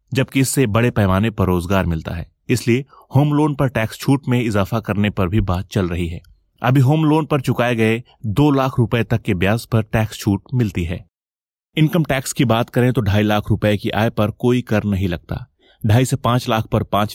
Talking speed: 215 wpm